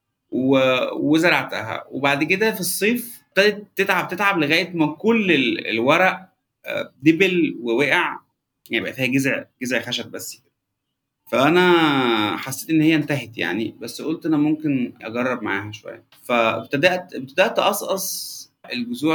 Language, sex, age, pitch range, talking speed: Arabic, male, 30-49, 125-175 Hz, 115 wpm